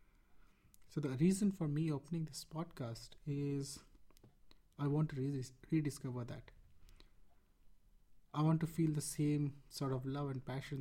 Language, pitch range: English, 125-150 Hz